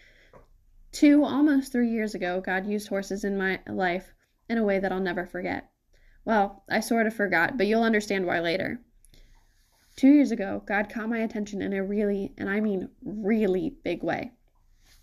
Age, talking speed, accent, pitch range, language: 10-29, 175 wpm, American, 195-225 Hz, English